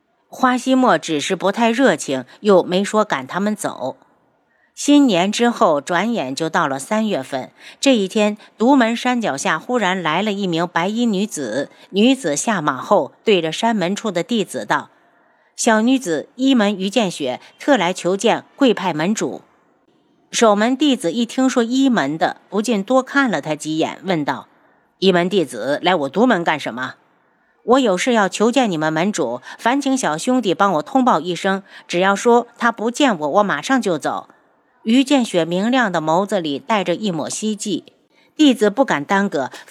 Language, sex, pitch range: Chinese, female, 180-245 Hz